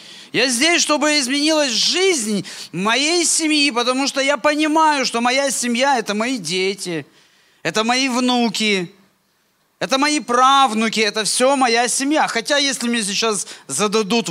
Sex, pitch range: male, 190-280 Hz